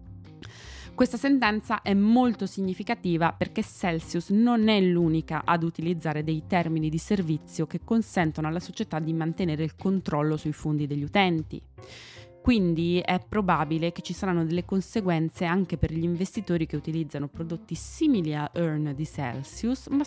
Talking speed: 145 wpm